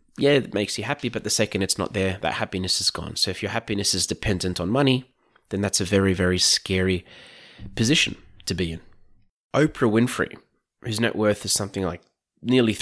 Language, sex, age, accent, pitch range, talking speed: English, male, 20-39, Australian, 90-105 Hz, 195 wpm